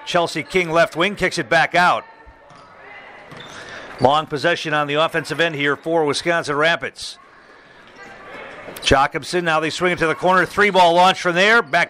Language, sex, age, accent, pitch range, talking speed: English, male, 50-69, American, 155-185 Hz, 160 wpm